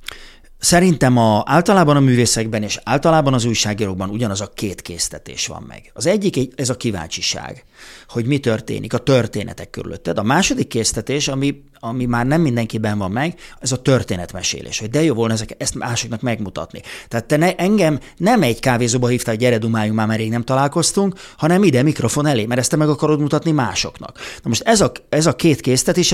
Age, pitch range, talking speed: 30-49, 115-150 Hz, 185 wpm